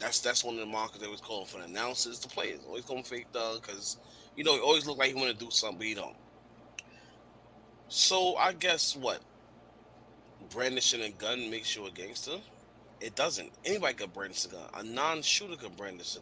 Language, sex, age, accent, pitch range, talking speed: English, male, 30-49, American, 115-140 Hz, 215 wpm